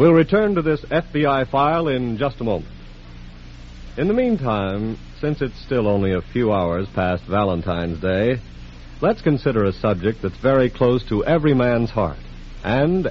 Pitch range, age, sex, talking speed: 85-130 Hz, 60-79, male, 160 wpm